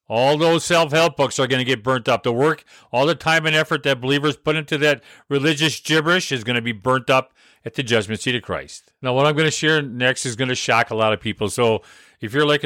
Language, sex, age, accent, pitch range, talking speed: English, male, 50-69, American, 130-160 Hz, 260 wpm